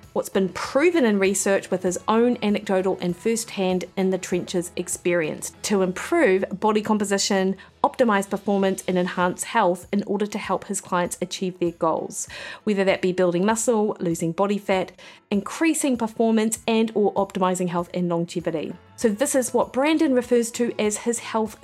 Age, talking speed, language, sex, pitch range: 30-49, 165 wpm, English, female, 185-225 Hz